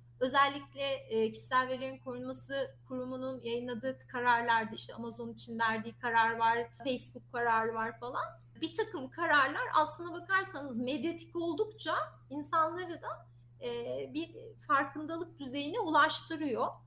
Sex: female